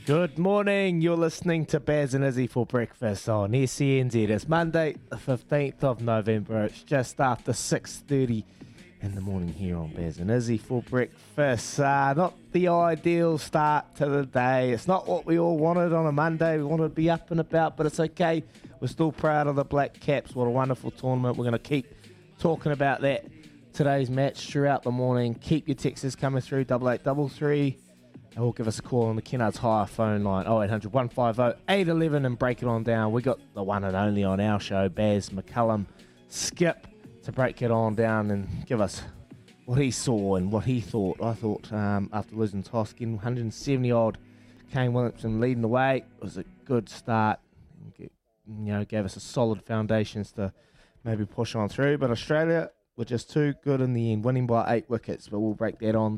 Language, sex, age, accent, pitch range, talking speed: English, male, 20-39, Australian, 110-145 Hz, 200 wpm